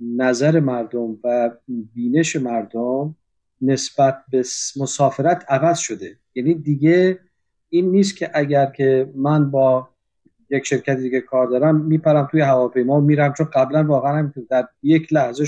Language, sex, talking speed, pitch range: Persian, male, 140 wpm, 125-155 Hz